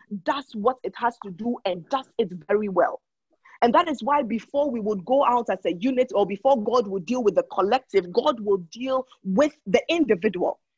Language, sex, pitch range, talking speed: English, female, 215-305 Hz, 205 wpm